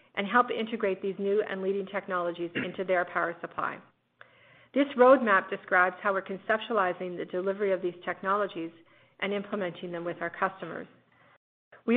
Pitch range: 180-210 Hz